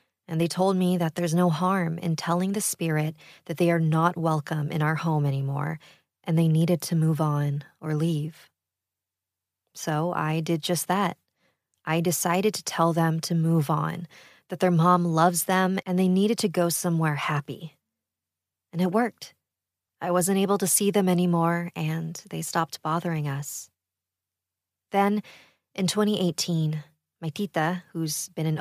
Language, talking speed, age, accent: English, 160 wpm, 20-39, American